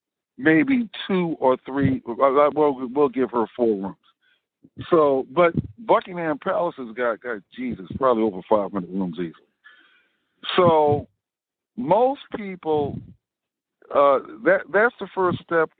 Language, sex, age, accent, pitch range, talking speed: English, male, 50-69, American, 125-175 Hz, 120 wpm